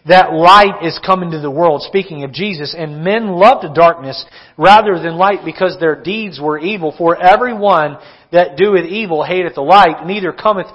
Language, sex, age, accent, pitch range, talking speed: English, male, 40-59, American, 180-250 Hz, 185 wpm